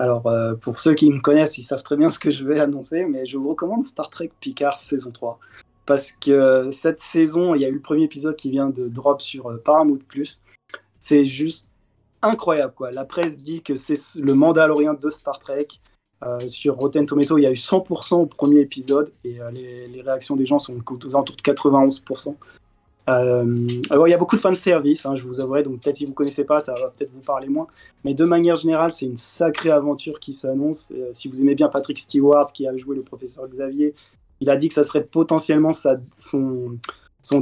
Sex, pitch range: male, 125-150 Hz